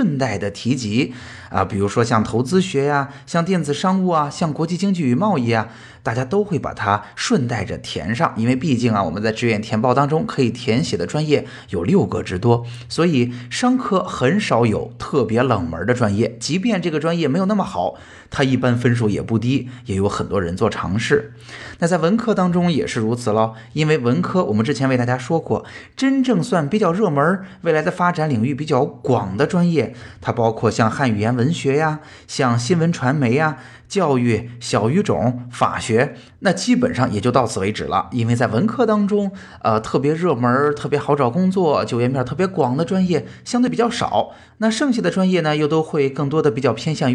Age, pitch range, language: 20-39, 115-170 Hz, Chinese